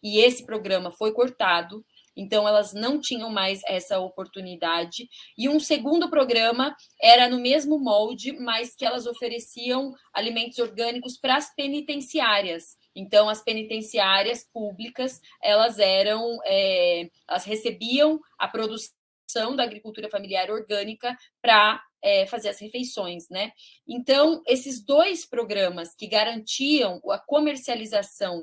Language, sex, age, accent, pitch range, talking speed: Portuguese, female, 20-39, Brazilian, 210-275 Hz, 110 wpm